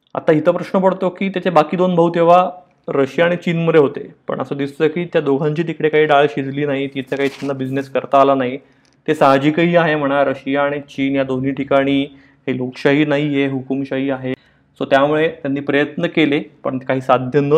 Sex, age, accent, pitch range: male, 30-49, native, 135-165 Hz